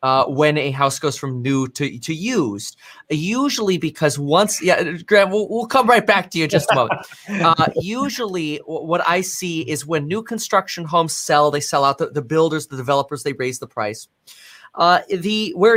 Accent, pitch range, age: American, 145-190 Hz, 30-49